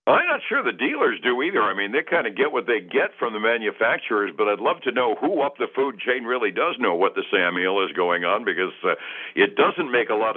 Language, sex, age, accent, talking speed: English, male, 60-79, American, 260 wpm